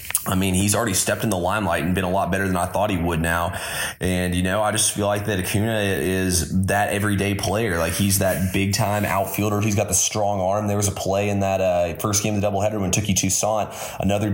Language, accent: English, American